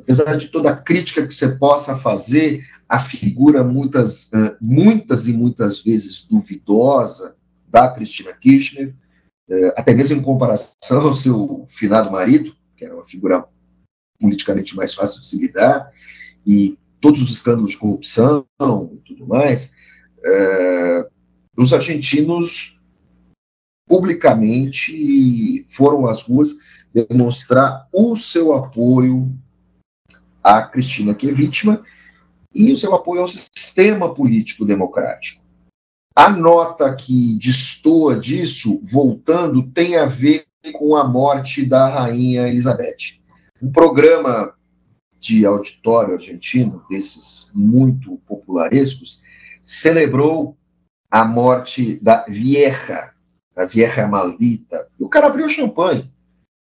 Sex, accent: male, Brazilian